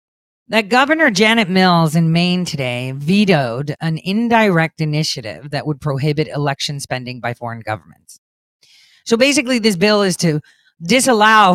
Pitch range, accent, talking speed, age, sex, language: 165-230 Hz, American, 135 wpm, 40-59, female, English